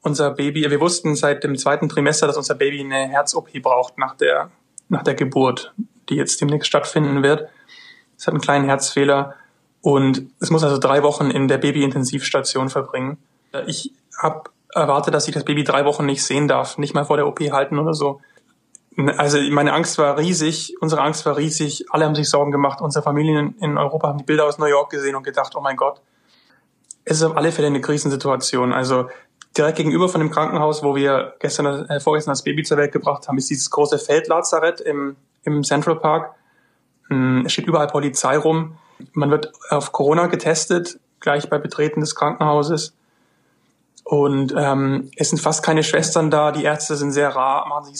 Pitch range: 140-155 Hz